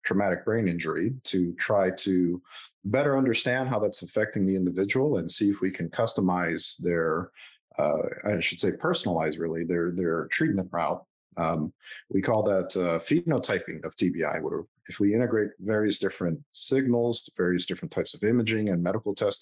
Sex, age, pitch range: male, 40-59, 95-115 Hz